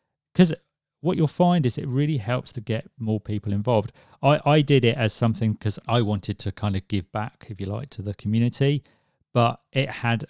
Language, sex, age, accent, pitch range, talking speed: English, male, 40-59, British, 105-135 Hz, 210 wpm